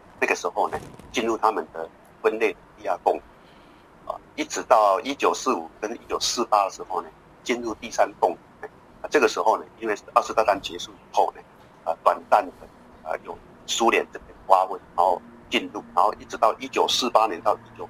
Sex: male